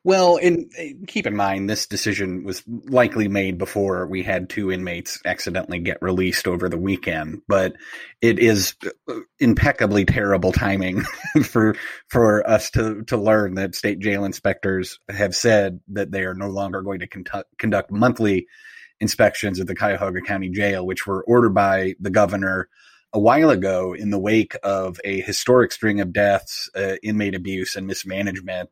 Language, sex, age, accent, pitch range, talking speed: English, male, 30-49, American, 95-105 Hz, 160 wpm